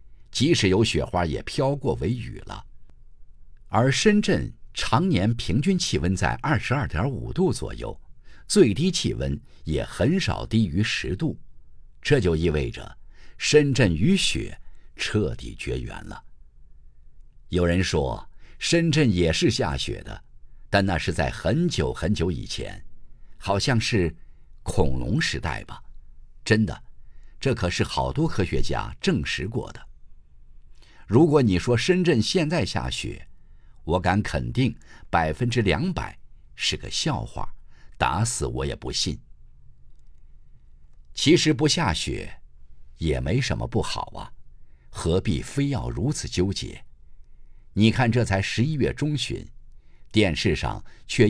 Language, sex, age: Chinese, male, 50-69